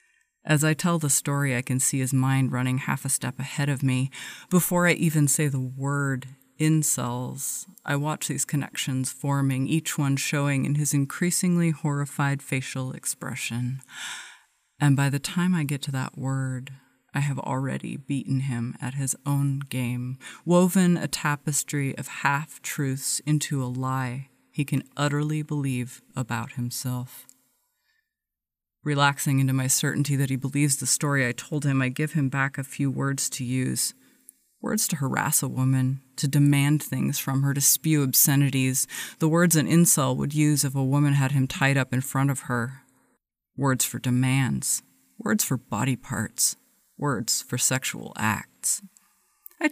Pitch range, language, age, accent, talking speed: 130-150 Hz, English, 30-49, American, 160 wpm